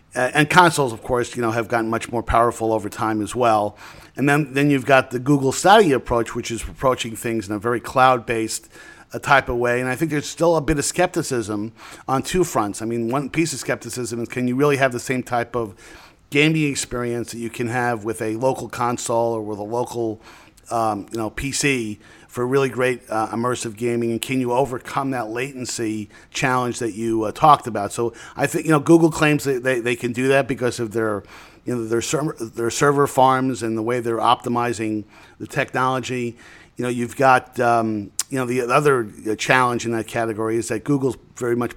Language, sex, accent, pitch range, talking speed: English, male, American, 110-130 Hz, 210 wpm